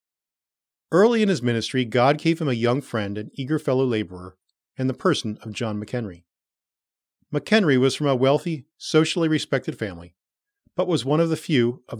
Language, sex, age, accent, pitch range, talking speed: English, male, 40-59, American, 120-165 Hz, 175 wpm